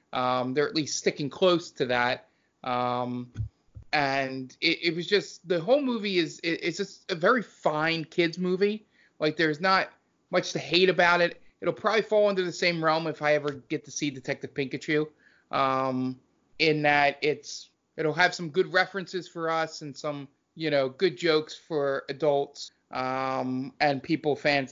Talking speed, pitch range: 175 wpm, 130-160 Hz